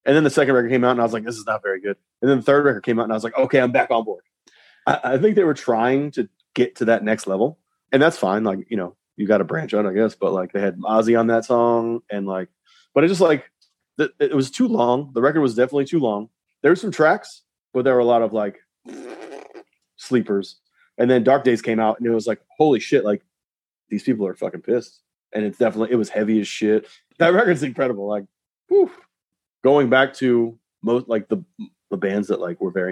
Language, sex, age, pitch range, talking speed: English, male, 30-49, 105-130 Hz, 250 wpm